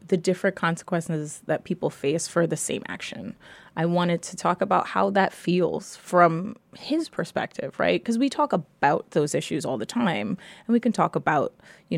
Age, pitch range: 20-39, 155-185 Hz